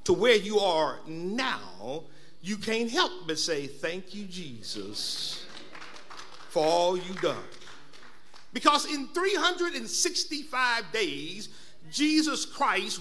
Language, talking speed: English, 105 wpm